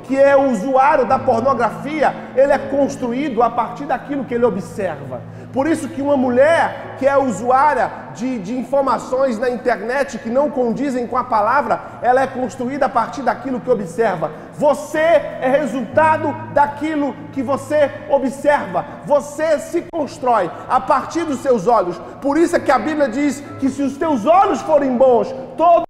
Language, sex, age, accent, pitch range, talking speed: Gujarati, male, 40-59, Brazilian, 245-305 Hz, 165 wpm